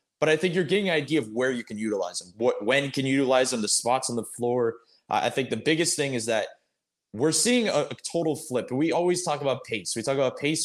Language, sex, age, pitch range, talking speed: English, male, 20-39, 115-150 Hz, 270 wpm